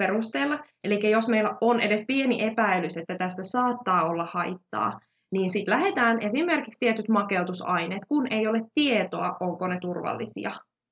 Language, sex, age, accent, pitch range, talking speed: Finnish, female, 20-39, native, 180-230 Hz, 135 wpm